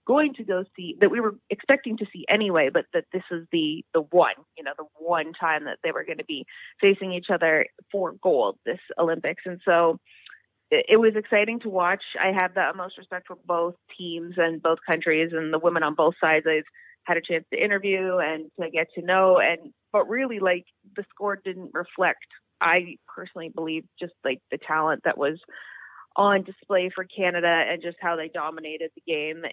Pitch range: 165-200 Hz